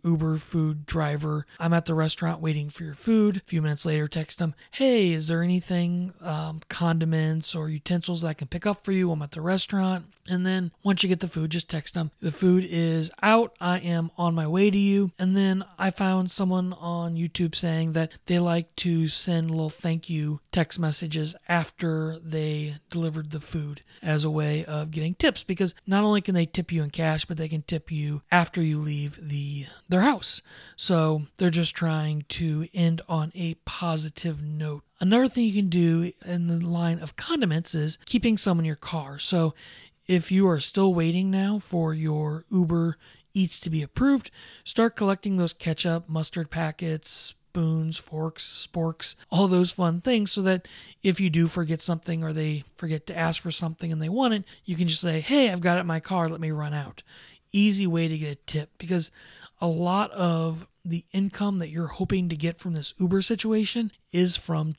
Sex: male